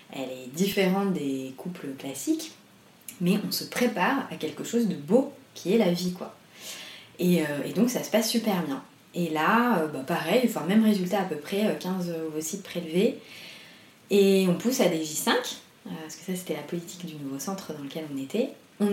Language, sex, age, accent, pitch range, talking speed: French, female, 20-39, French, 160-215 Hz, 205 wpm